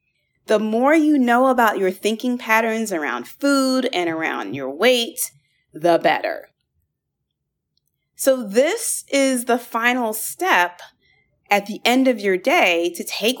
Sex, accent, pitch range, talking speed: female, American, 175-250 Hz, 135 wpm